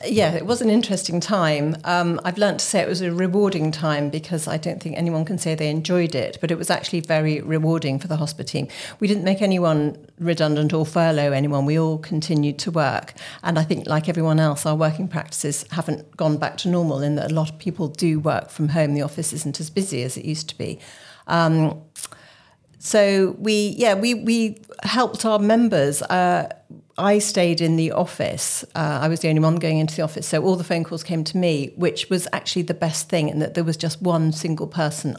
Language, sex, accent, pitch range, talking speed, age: English, female, British, 155-175 Hz, 220 wpm, 50-69